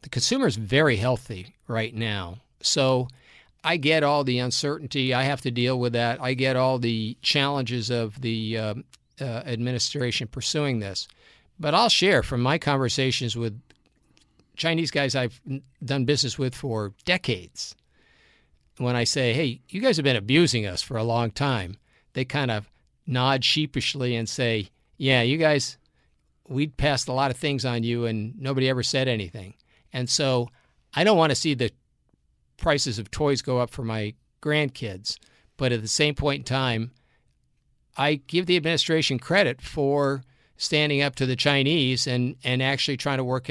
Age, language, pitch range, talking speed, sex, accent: 50-69, English, 115-140 Hz, 170 wpm, male, American